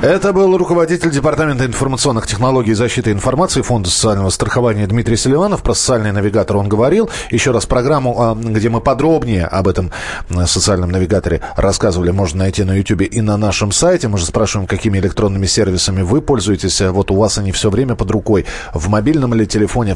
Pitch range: 105-135 Hz